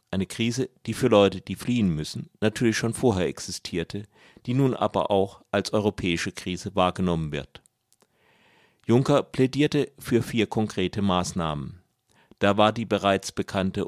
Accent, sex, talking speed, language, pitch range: German, male, 140 wpm, German, 95-115 Hz